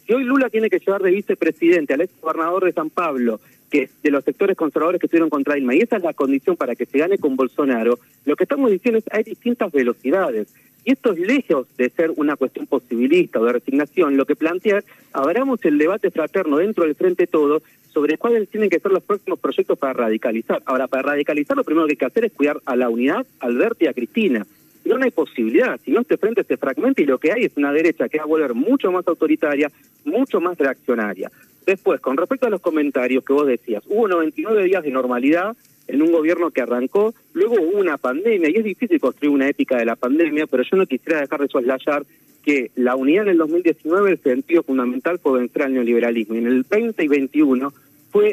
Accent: Argentinian